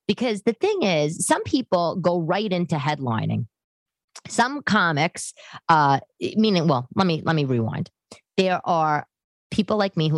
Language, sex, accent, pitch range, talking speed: English, female, American, 140-190 Hz, 155 wpm